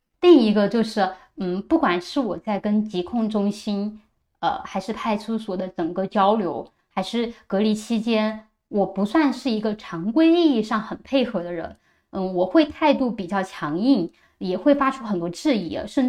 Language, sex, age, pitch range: Chinese, female, 20-39, 190-270 Hz